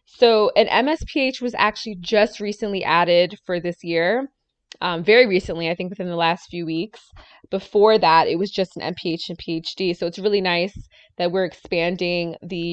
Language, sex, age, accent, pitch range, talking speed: English, female, 20-39, American, 175-225 Hz, 180 wpm